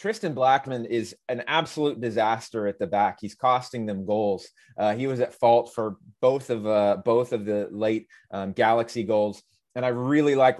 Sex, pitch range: male, 115-160 Hz